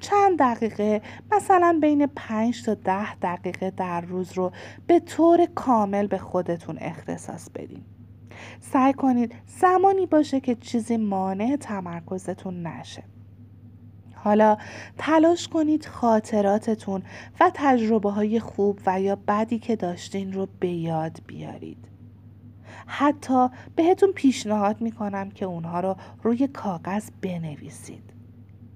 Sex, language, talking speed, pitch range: female, Persian, 115 wpm, 165-235 Hz